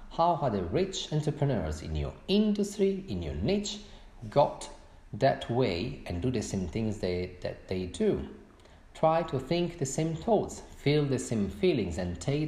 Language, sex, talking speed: English, male, 170 wpm